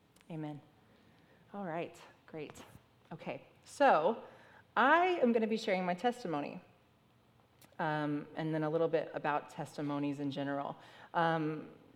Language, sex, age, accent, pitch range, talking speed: English, female, 30-49, American, 145-175 Hz, 125 wpm